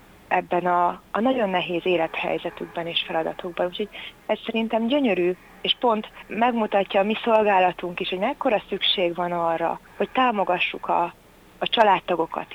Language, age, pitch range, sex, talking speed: Hungarian, 30-49, 175-210 Hz, female, 140 wpm